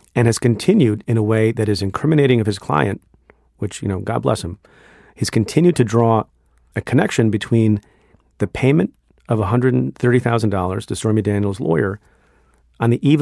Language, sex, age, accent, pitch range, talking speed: English, male, 40-59, American, 105-125 Hz, 165 wpm